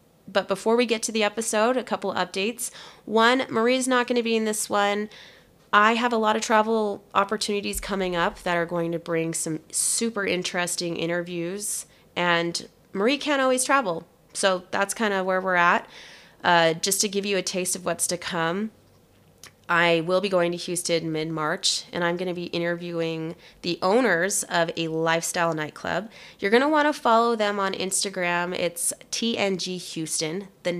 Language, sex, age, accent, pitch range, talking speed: English, female, 20-39, American, 170-215 Hz, 180 wpm